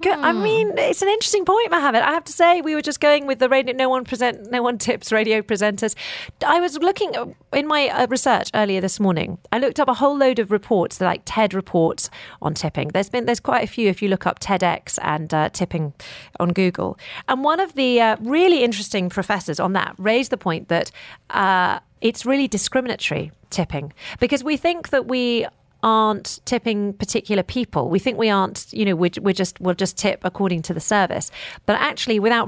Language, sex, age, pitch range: English, female, 40-59, 185-255 Hz